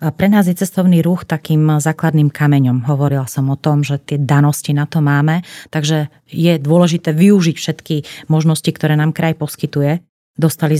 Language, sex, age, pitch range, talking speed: Slovak, female, 30-49, 145-160 Hz, 165 wpm